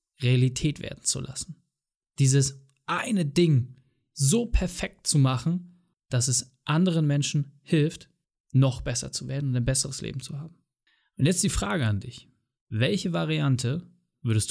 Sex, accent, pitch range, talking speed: male, German, 125-155 Hz, 145 wpm